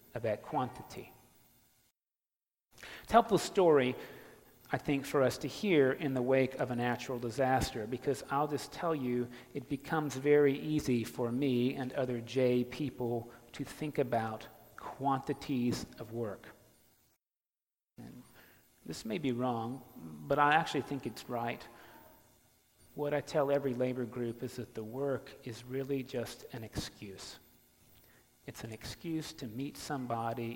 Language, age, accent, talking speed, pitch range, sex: English, 40-59, American, 140 wpm, 120-145 Hz, male